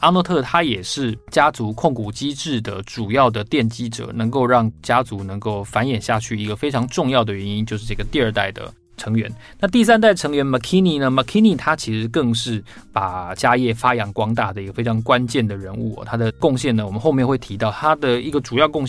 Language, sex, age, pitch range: Chinese, male, 20-39, 110-130 Hz